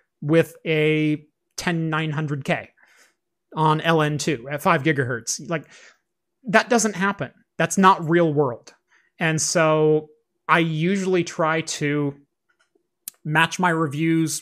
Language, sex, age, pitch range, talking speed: English, male, 30-49, 155-185 Hz, 105 wpm